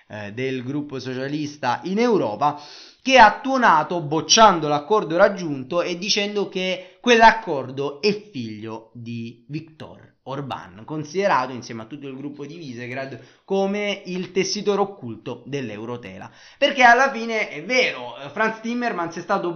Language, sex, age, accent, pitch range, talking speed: Italian, male, 20-39, native, 125-200 Hz, 130 wpm